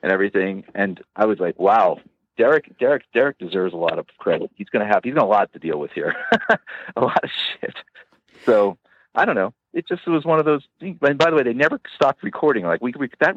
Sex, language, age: male, English, 50-69